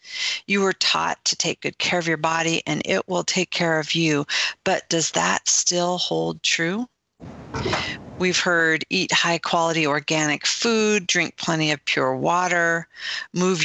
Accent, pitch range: American, 160-205 Hz